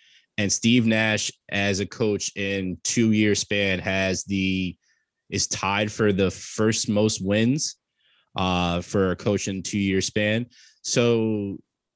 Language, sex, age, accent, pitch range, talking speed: English, male, 20-39, American, 90-125 Hz, 140 wpm